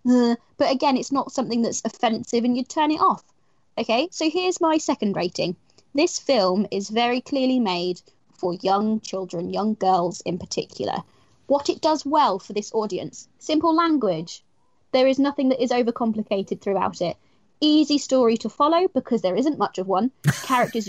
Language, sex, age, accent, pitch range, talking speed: English, female, 20-39, British, 210-295 Hz, 170 wpm